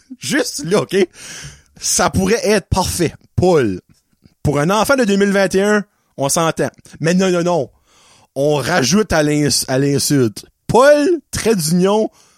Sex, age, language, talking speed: male, 30-49, French, 135 wpm